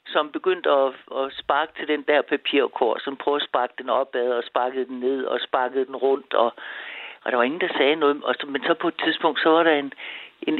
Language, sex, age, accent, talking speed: Danish, male, 60-79, native, 240 wpm